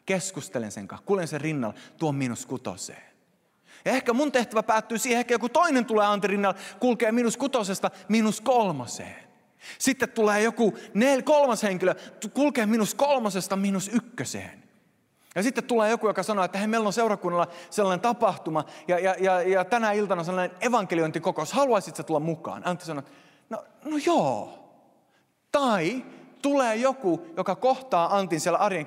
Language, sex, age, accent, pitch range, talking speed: Finnish, male, 30-49, native, 140-220 Hz, 155 wpm